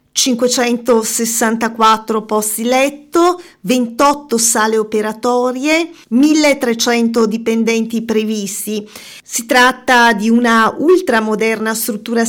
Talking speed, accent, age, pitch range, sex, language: 75 wpm, native, 40-59, 220-260 Hz, female, Italian